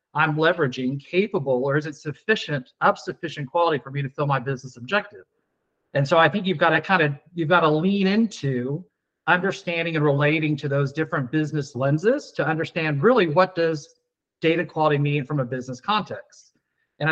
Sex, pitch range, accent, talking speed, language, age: male, 145-175 Hz, American, 180 wpm, English, 40-59